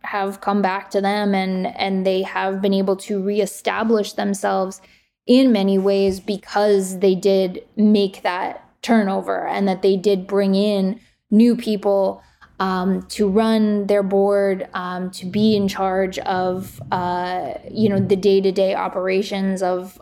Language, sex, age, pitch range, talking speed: English, female, 20-39, 190-215 Hz, 145 wpm